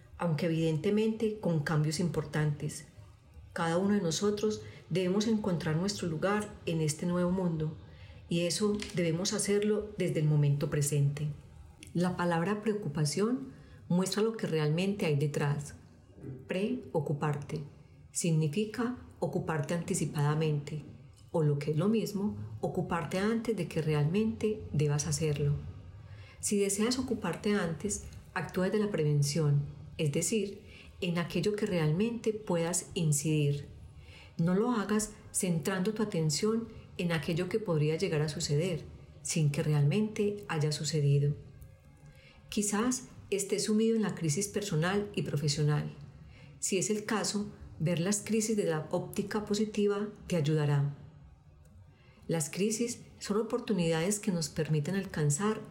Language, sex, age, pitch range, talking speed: Spanish, female, 40-59, 150-205 Hz, 125 wpm